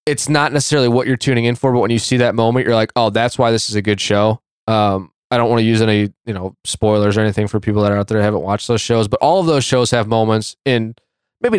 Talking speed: 290 wpm